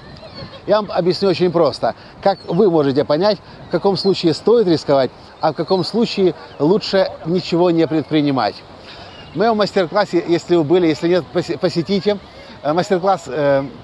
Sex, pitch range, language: male, 155-195 Hz, Russian